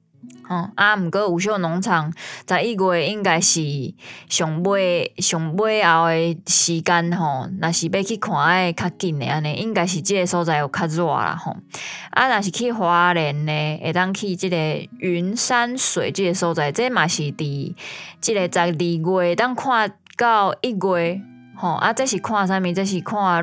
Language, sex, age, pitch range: Chinese, female, 20-39, 165-205 Hz